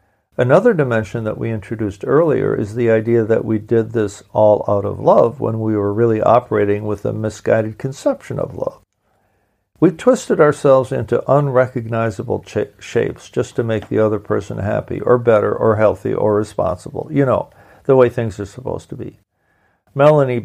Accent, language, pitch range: American, English, 110-130 Hz